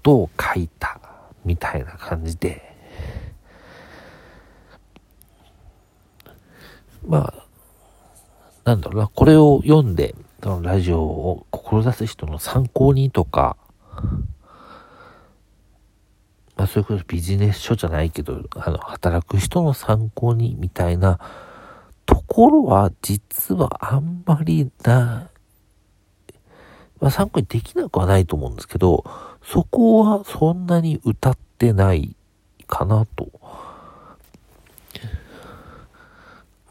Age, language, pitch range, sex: 50-69, Japanese, 85-115 Hz, male